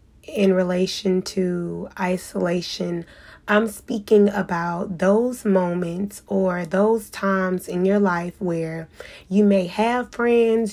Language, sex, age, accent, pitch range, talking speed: English, female, 20-39, American, 180-205 Hz, 110 wpm